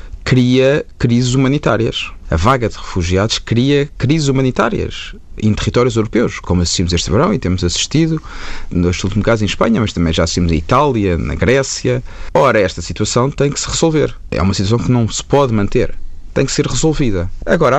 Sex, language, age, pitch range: male, Portuguese, 30-49, 90-115 Hz